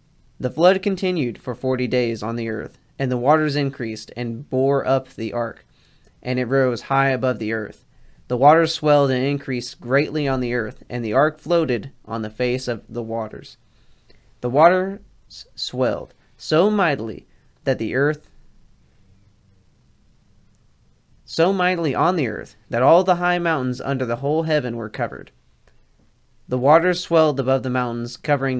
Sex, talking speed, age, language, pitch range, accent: male, 155 wpm, 20-39, English, 115-145 Hz, American